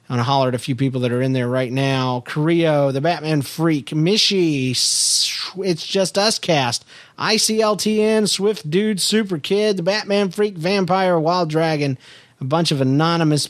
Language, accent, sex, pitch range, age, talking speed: English, American, male, 135-185 Hz, 40-59, 170 wpm